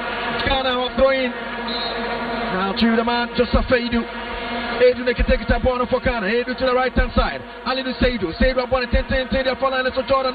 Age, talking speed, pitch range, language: 30-49, 195 wpm, 230-245 Hz, English